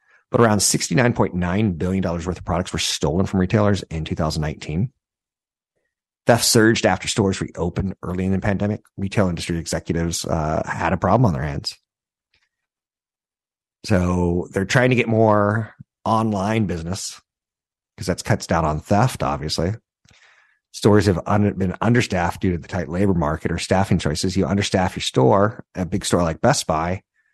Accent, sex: American, male